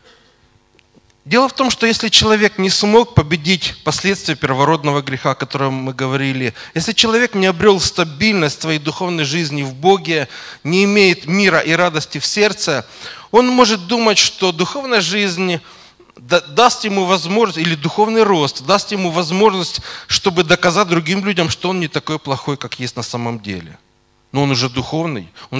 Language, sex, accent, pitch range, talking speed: Russian, male, native, 135-190 Hz, 160 wpm